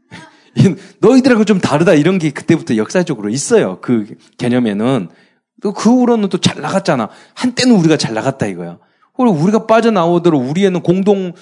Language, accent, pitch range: Korean, native, 140-210 Hz